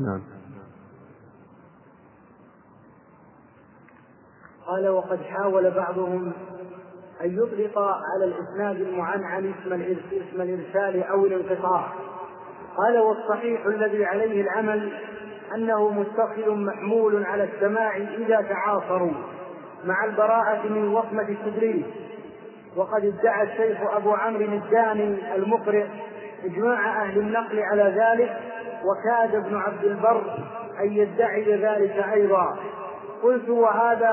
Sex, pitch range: male, 200-230 Hz